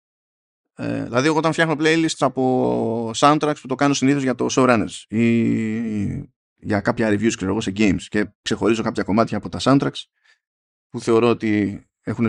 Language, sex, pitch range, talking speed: Greek, male, 110-165 Hz, 165 wpm